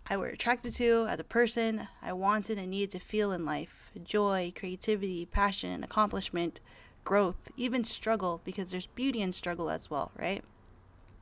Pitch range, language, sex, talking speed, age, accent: 185-240 Hz, English, female, 160 wpm, 20-39, American